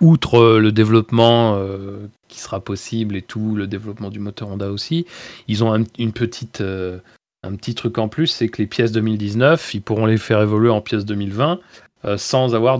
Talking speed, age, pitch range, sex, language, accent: 195 wpm, 30-49, 100-125 Hz, male, French, French